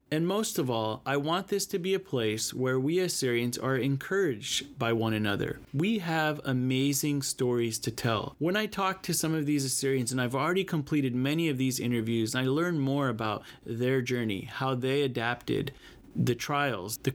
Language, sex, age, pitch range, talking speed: English, male, 30-49, 125-160 Hz, 185 wpm